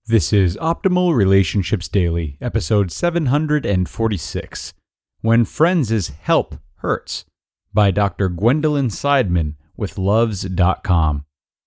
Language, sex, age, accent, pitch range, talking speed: English, male, 40-59, American, 95-135 Hz, 85 wpm